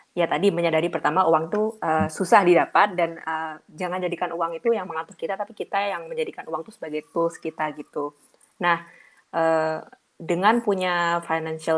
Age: 20-39